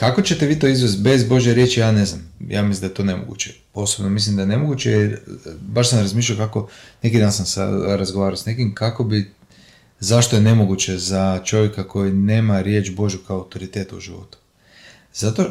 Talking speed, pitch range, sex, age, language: 190 wpm, 100-125 Hz, male, 30-49, Croatian